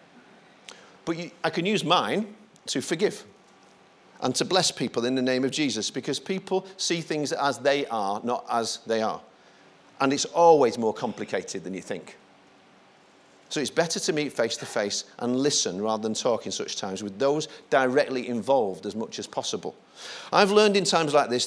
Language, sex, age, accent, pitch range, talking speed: English, male, 40-59, British, 125-170 Hz, 180 wpm